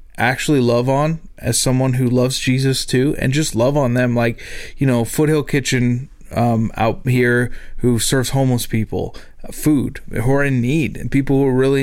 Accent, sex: American, male